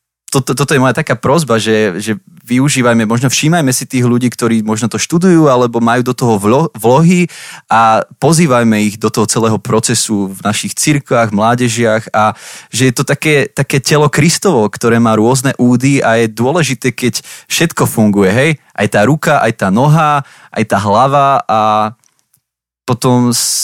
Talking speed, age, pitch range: 170 wpm, 20-39, 110-145 Hz